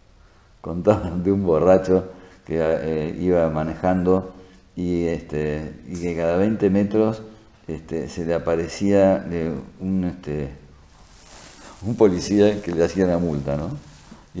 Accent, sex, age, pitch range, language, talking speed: Argentinian, male, 50-69, 85-105 Hz, Spanish, 130 wpm